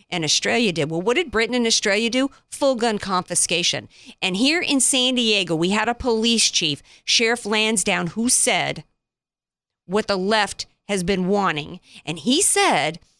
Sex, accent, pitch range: female, American, 175-230 Hz